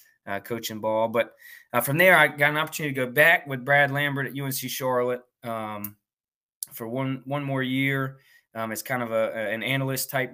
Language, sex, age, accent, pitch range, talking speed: English, male, 20-39, American, 115-135 Hz, 195 wpm